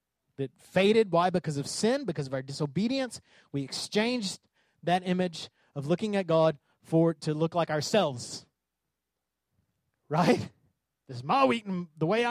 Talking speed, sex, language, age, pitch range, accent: 150 wpm, male, English, 30-49, 145-215 Hz, American